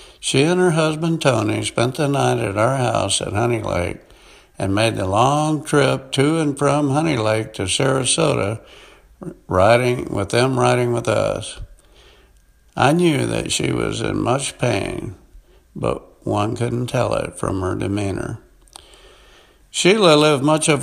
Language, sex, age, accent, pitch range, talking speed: English, male, 60-79, American, 105-140 Hz, 150 wpm